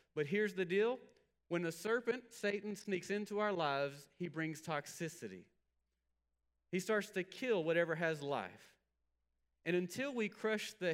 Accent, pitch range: American, 120-185 Hz